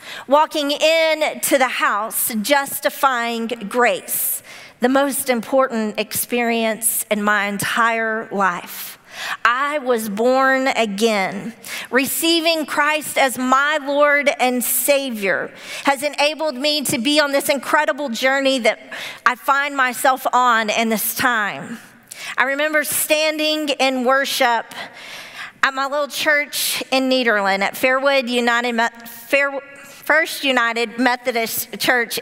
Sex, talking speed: female, 115 wpm